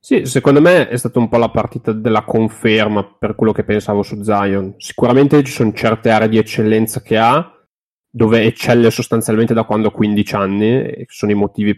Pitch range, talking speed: 105-115 Hz, 195 wpm